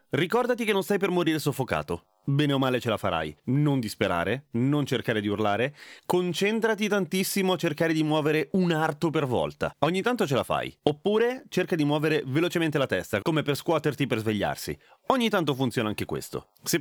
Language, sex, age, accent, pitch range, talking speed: Italian, male, 30-49, native, 115-155 Hz, 185 wpm